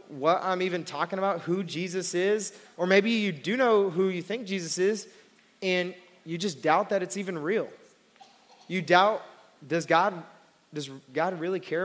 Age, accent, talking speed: 20-39, American, 170 wpm